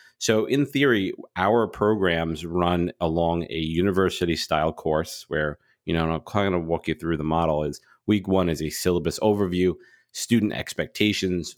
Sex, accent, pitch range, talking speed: male, American, 80-95 Hz, 160 wpm